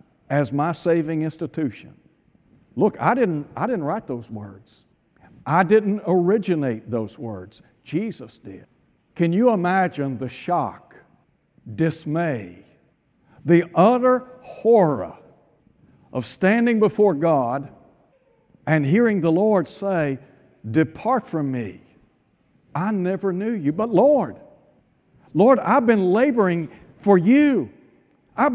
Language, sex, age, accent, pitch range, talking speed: English, male, 60-79, American, 130-205 Hz, 110 wpm